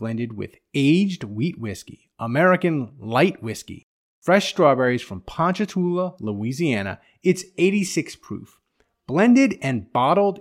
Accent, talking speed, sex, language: American, 110 wpm, male, English